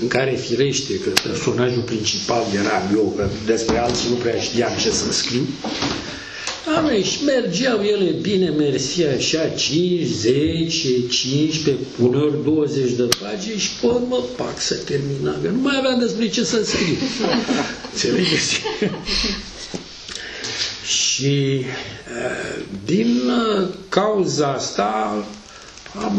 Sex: male